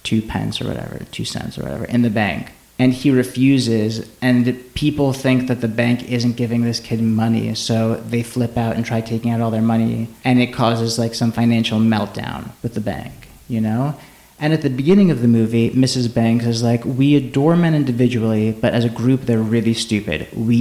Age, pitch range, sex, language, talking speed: 30-49, 115-130 Hz, male, English, 205 wpm